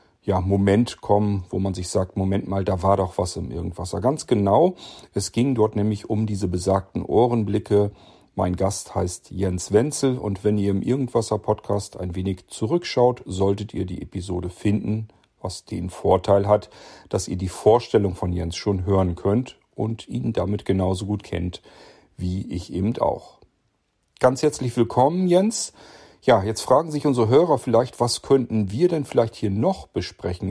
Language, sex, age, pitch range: German, male, 40-59, 95-120 Hz